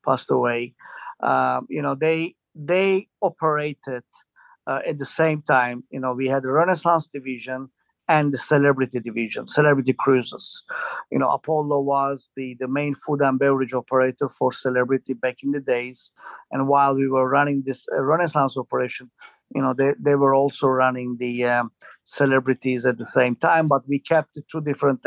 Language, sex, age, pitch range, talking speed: English, male, 50-69, 130-155 Hz, 170 wpm